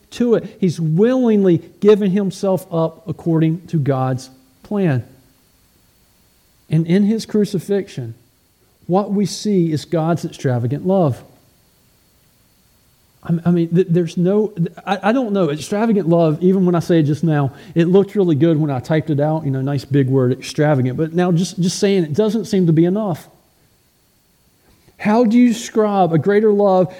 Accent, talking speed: American, 160 wpm